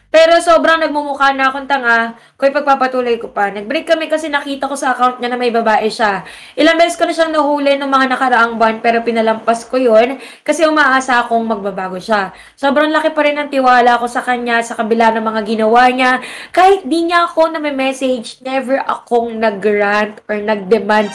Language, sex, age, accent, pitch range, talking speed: English, female, 20-39, Filipino, 230-300 Hz, 190 wpm